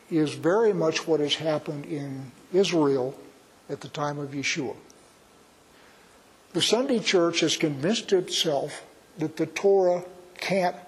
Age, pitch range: 60-79, 155-190 Hz